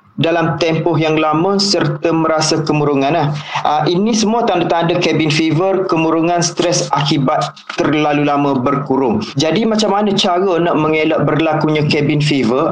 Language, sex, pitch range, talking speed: Malay, male, 155-185 Hz, 125 wpm